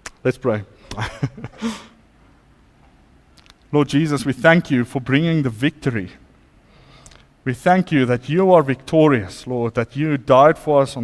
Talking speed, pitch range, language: 135 wpm, 115-145 Hz, English